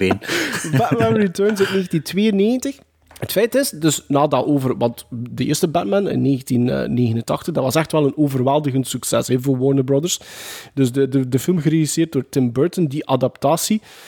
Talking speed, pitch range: 165 wpm, 135-195 Hz